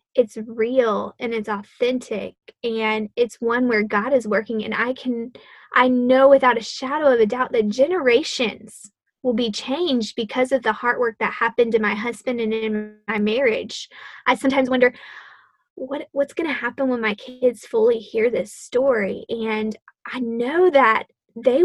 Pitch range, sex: 225-265 Hz, female